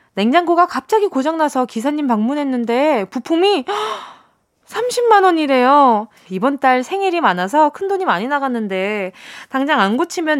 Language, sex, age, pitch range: Korean, female, 20-39, 230-345 Hz